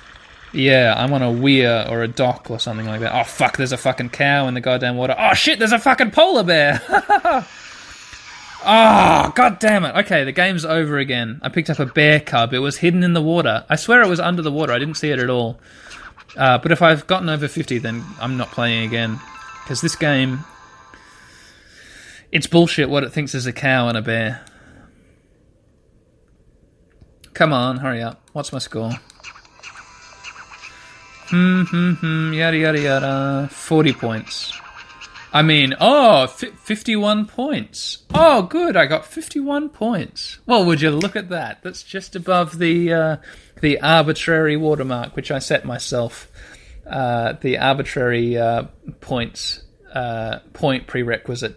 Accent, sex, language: Australian, male, English